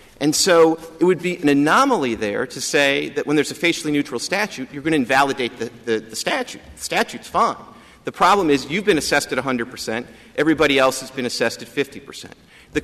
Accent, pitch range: American, 130-195 Hz